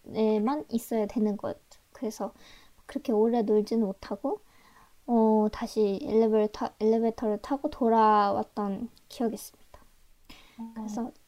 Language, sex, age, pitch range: Korean, male, 20-39, 215-250 Hz